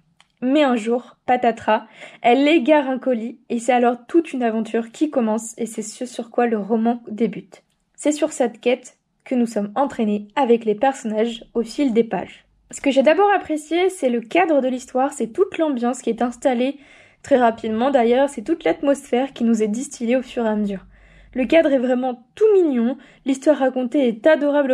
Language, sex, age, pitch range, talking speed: French, female, 20-39, 230-280 Hz, 195 wpm